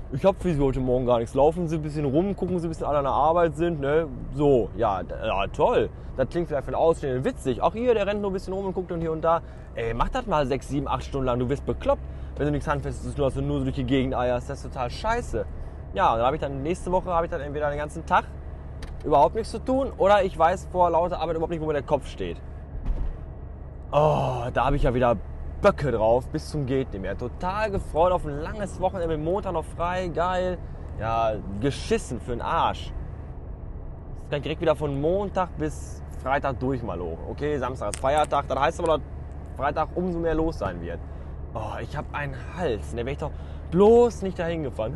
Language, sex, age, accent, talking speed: German, male, 10-29, German, 235 wpm